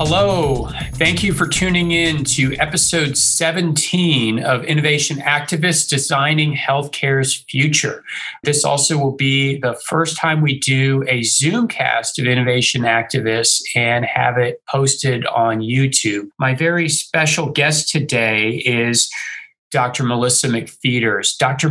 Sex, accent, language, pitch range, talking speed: male, American, English, 125-150 Hz, 125 wpm